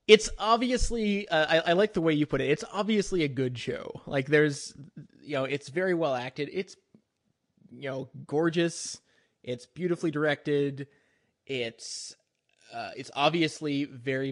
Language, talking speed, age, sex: English, 150 wpm, 20-39, male